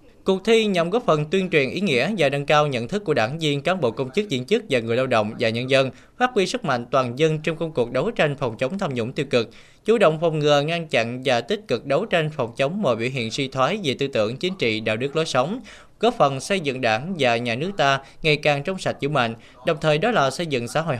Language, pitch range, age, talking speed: Vietnamese, 125-175 Hz, 20-39, 275 wpm